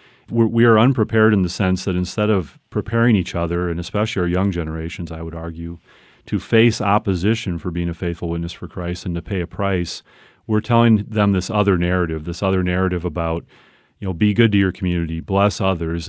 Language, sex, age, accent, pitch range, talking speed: English, male, 40-59, American, 90-105 Hz, 200 wpm